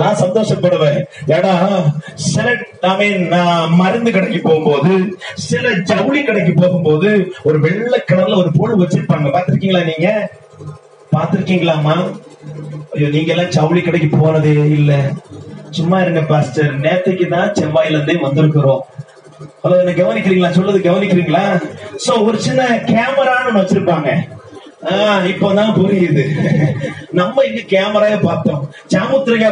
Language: Tamil